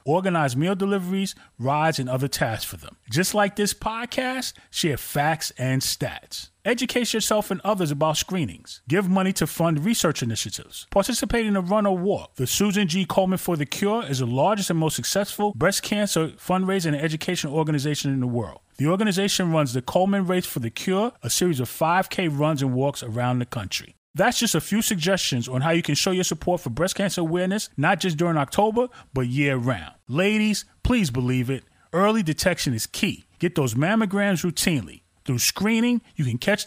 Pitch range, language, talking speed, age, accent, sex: 135-200 Hz, English, 190 wpm, 30-49, American, male